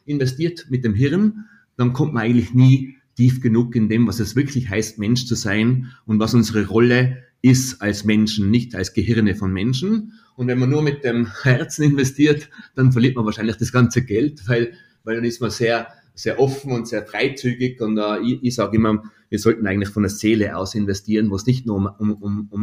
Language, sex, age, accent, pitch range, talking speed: German, male, 30-49, German, 110-130 Hz, 210 wpm